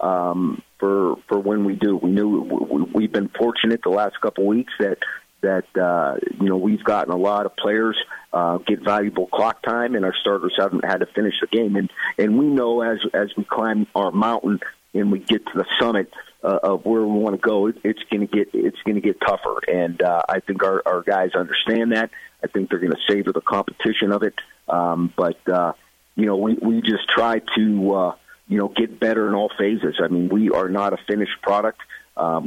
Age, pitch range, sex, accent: 40-59, 95-110 Hz, male, American